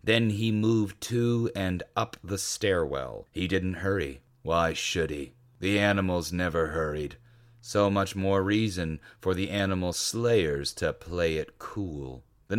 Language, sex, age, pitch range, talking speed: English, male, 30-49, 85-110 Hz, 150 wpm